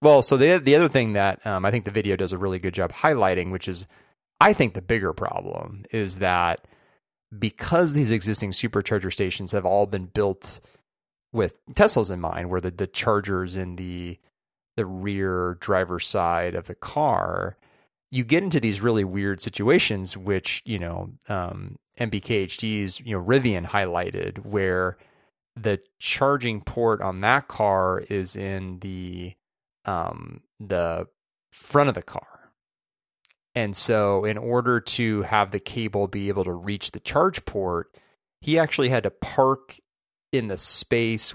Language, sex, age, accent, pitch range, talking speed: English, male, 30-49, American, 95-115 Hz, 155 wpm